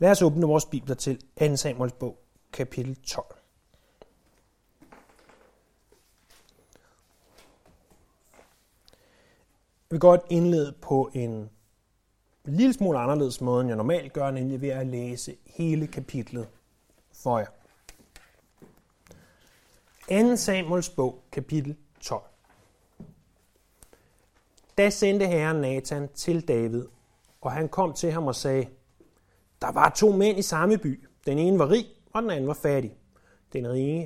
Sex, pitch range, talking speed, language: male, 120-165 Hz, 120 wpm, Danish